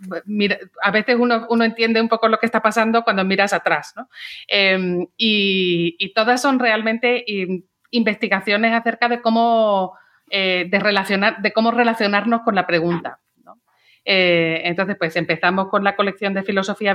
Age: 40-59